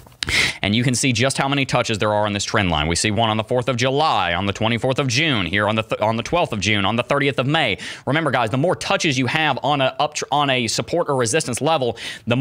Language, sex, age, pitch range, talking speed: English, male, 30-49, 110-150 Hz, 280 wpm